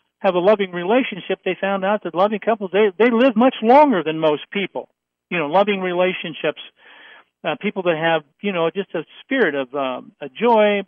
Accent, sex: American, male